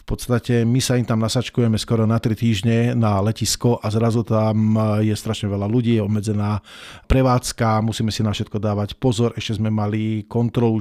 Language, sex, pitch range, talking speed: Slovak, male, 110-125 Hz, 185 wpm